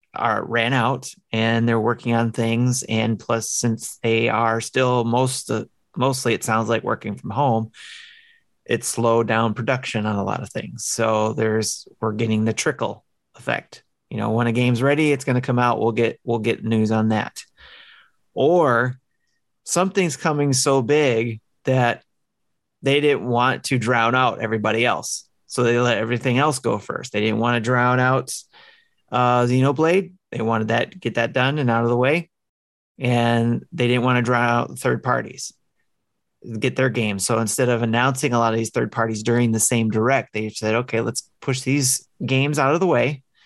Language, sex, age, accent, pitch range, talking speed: English, male, 30-49, American, 115-135 Hz, 185 wpm